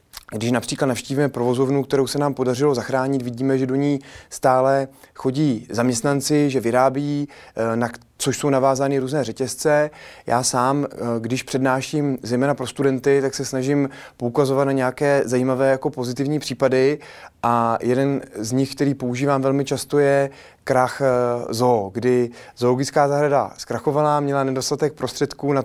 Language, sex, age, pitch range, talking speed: Czech, male, 30-49, 125-140 Hz, 140 wpm